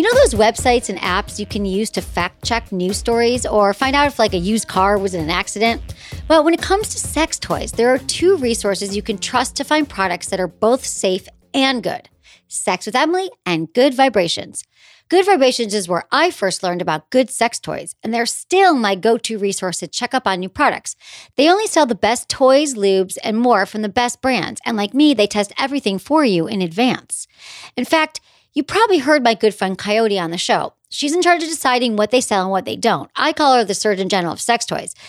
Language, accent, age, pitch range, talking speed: English, American, 40-59, 195-290 Hz, 230 wpm